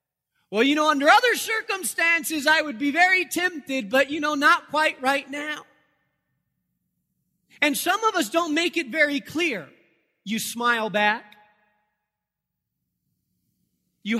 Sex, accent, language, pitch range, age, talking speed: male, American, English, 220-300 Hz, 30-49, 130 wpm